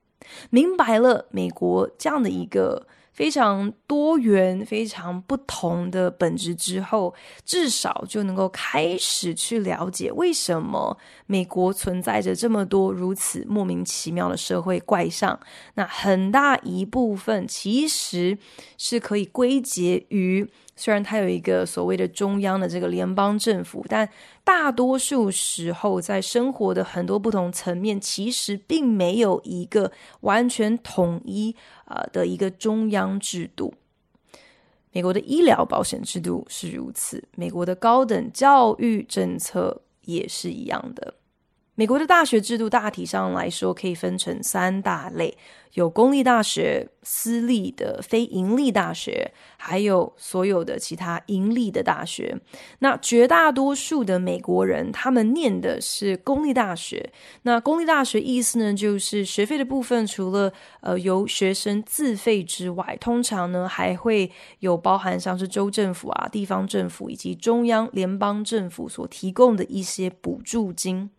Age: 20-39